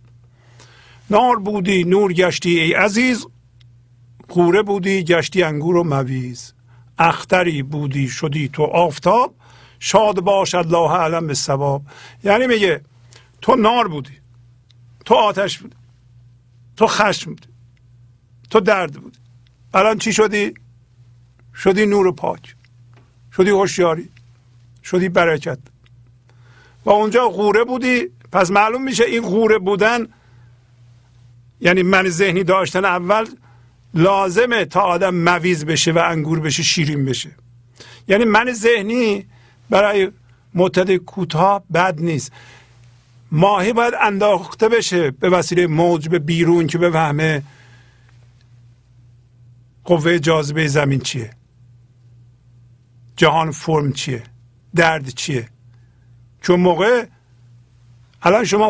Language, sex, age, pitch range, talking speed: Persian, male, 50-69, 120-190 Hz, 105 wpm